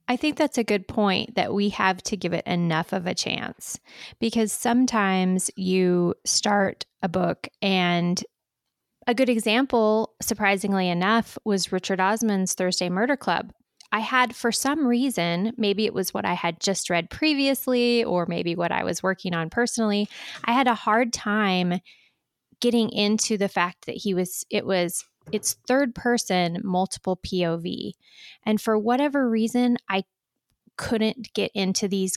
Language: English